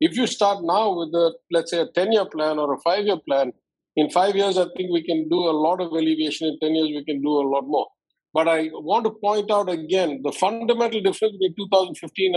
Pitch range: 160-200 Hz